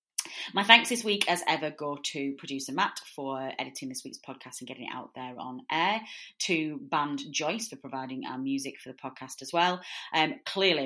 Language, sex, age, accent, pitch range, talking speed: English, female, 30-49, British, 130-160 Hz, 200 wpm